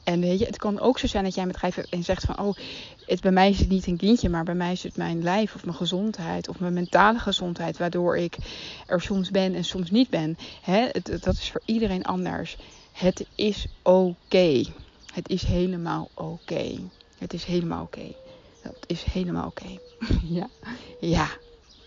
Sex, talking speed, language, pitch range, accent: female, 205 wpm, Dutch, 175-210 Hz, Dutch